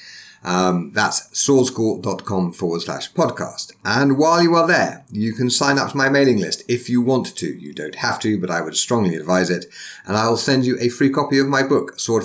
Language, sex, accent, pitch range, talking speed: English, male, British, 95-125 Hz, 215 wpm